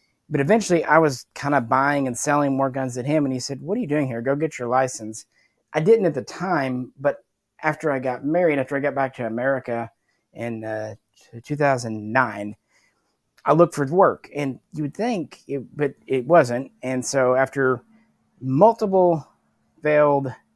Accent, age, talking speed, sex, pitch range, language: American, 30-49, 175 wpm, male, 125-150 Hz, English